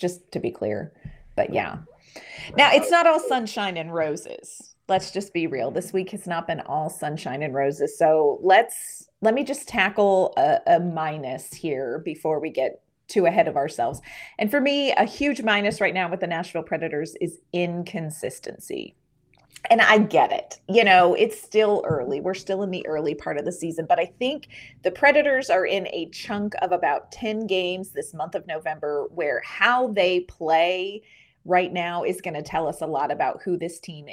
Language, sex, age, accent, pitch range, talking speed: English, female, 30-49, American, 165-235 Hz, 190 wpm